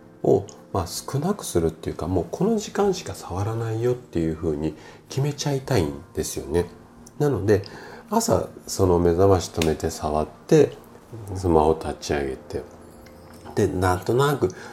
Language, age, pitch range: Japanese, 40-59, 80-115 Hz